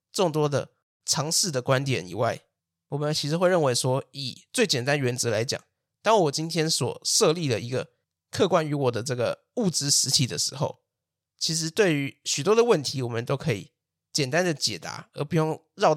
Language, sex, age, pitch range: Chinese, male, 20-39, 130-160 Hz